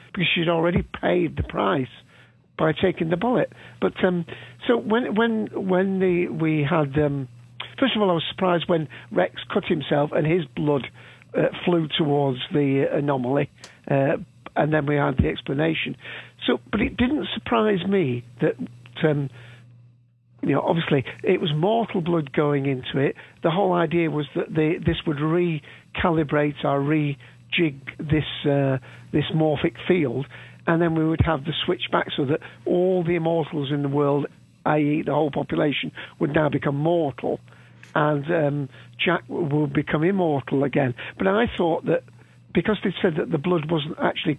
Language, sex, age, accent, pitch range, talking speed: English, male, 50-69, British, 140-175 Hz, 165 wpm